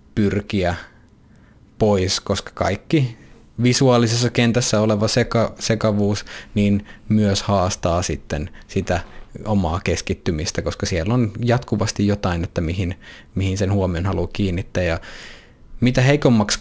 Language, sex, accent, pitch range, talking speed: Finnish, male, native, 95-110 Hz, 110 wpm